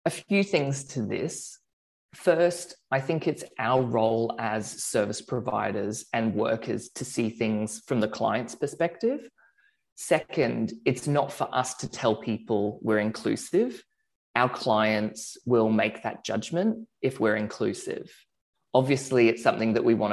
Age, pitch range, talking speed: 20-39, 110-135 Hz, 145 wpm